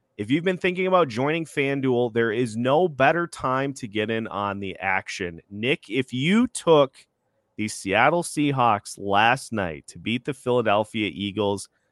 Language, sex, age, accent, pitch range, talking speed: English, male, 30-49, American, 105-155 Hz, 160 wpm